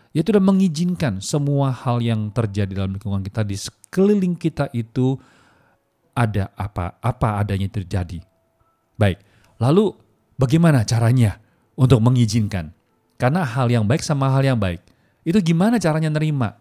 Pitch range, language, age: 100-150 Hz, Chinese, 40-59